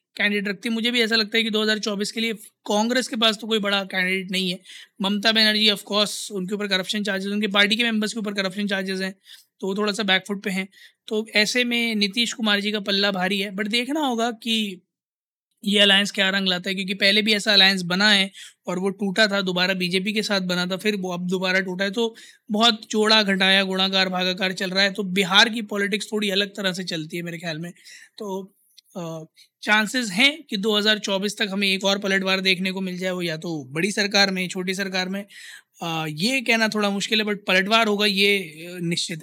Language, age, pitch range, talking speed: Hindi, 20-39, 190-215 Hz, 220 wpm